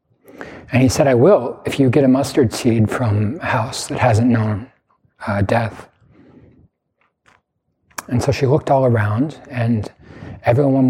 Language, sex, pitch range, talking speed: English, male, 110-135 Hz, 150 wpm